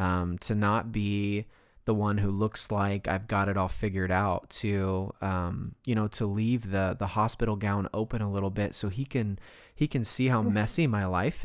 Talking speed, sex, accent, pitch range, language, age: 205 wpm, male, American, 100-120 Hz, English, 20-39